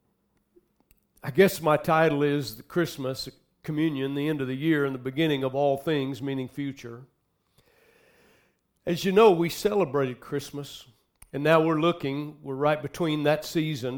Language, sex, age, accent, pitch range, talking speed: English, male, 60-79, American, 130-165 Hz, 155 wpm